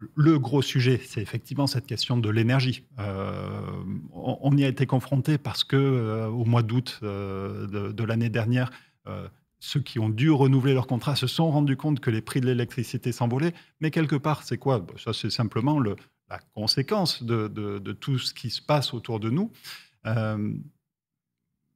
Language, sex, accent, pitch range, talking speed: French, male, French, 110-140 Hz, 190 wpm